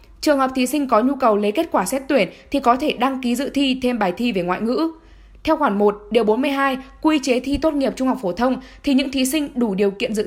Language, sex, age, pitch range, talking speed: Vietnamese, female, 10-29, 230-280 Hz, 275 wpm